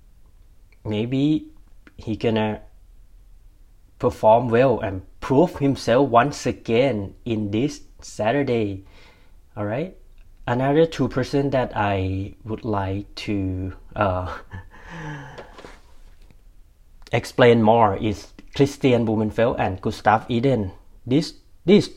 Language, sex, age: Thai, male, 30-49